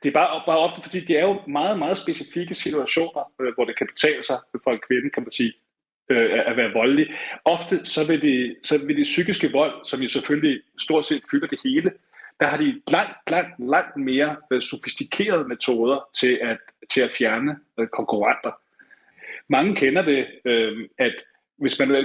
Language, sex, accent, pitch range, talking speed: Danish, male, native, 140-200 Hz, 170 wpm